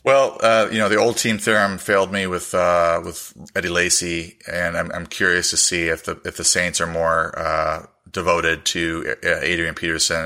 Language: English